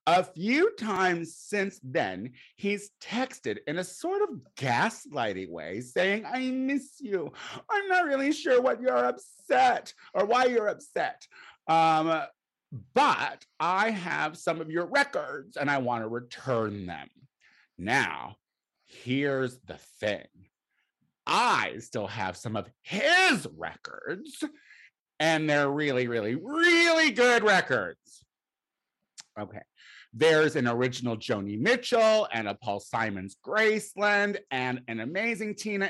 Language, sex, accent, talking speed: English, male, American, 125 wpm